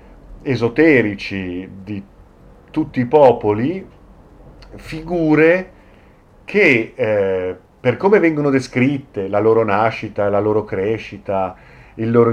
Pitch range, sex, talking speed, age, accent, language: 105-130 Hz, male, 95 wpm, 40-59, native, Italian